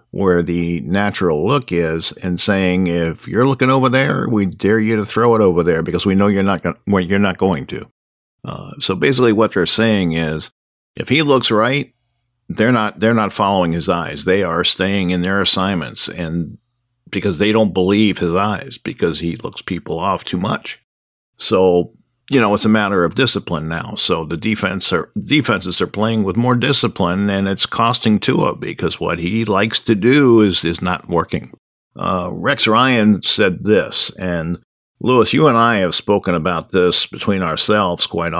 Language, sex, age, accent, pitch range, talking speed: English, male, 50-69, American, 90-115 Hz, 185 wpm